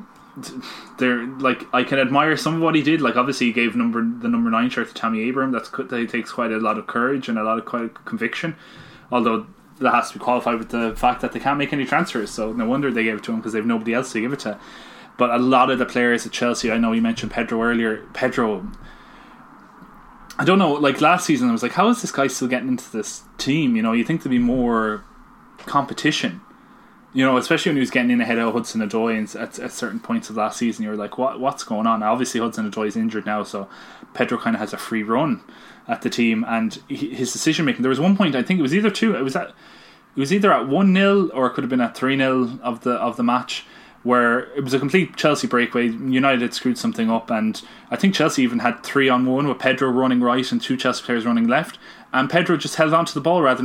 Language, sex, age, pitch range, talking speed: English, male, 10-29, 115-160 Hz, 255 wpm